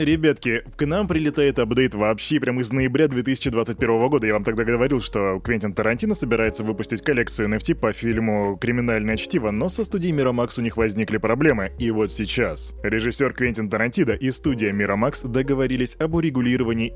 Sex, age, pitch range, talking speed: male, 20-39, 110-150 Hz, 165 wpm